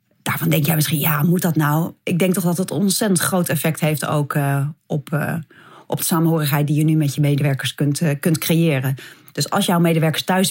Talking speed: 225 wpm